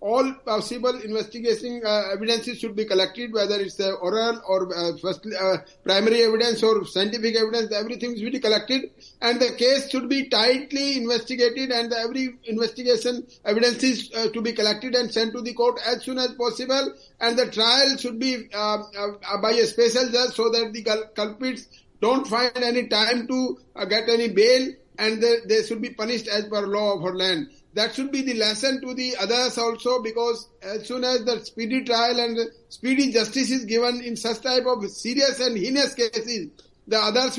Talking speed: 190 wpm